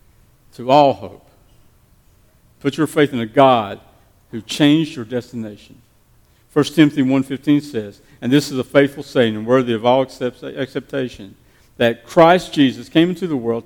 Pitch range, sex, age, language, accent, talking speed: 110-135 Hz, male, 50-69, English, American, 160 wpm